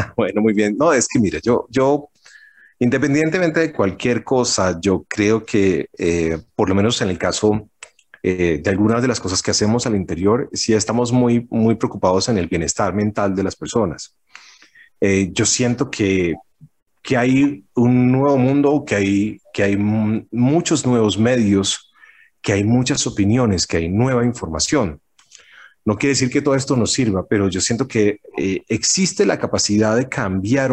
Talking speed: 175 wpm